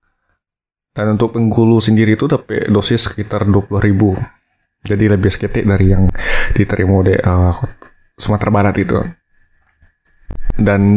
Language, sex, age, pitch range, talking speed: Indonesian, male, 20-39, 100-110 Hz, 120 wpm